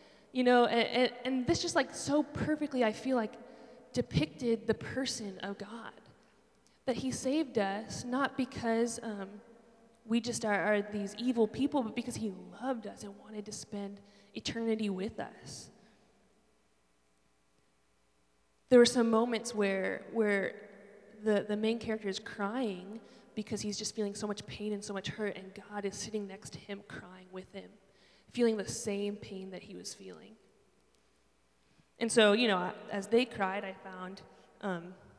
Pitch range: 190-230 Hz